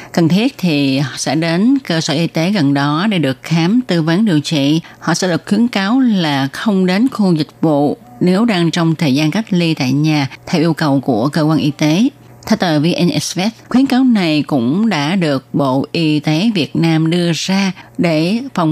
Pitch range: 150-205 Hz